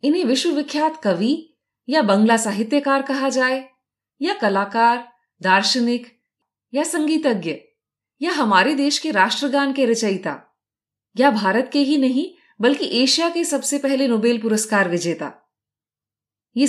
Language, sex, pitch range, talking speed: Hindi, female, 205-285 Hz, 120 wpm